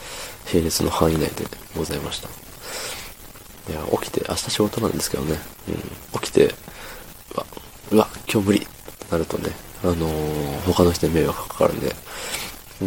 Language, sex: Japanese, male